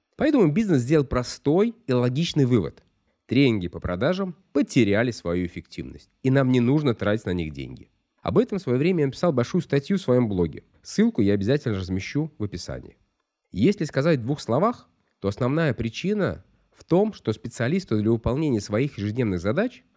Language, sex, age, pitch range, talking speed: Russian, male, 20-39, 100-150 Hz, 170 wpm